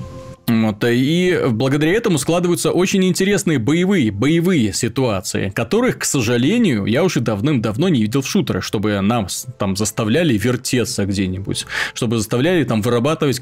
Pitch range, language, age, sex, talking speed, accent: 115-145 Hz, Russian, 20-39, male, 135 wpm, native